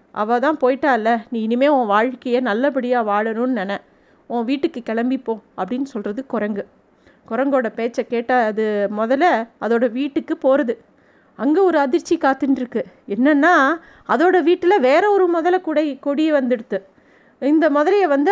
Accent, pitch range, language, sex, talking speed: native, 235-300 Hz, Tamil, female, 130 wpm